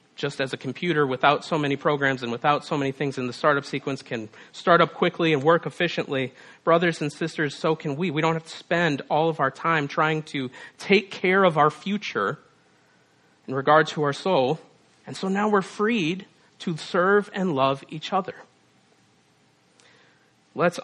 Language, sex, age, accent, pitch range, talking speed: English, male, 40-59, American, 130-170 Hz, 180 wpm